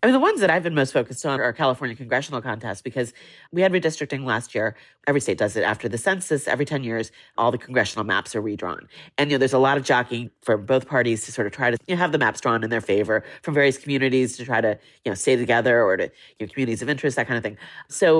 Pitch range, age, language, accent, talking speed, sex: 120-160 Hz, 30-49, English, American, 275 wpm, female